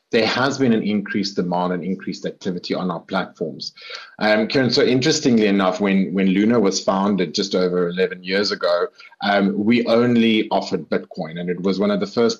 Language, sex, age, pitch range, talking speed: English, male, 30-49, 95-120 Hz, 190 wpm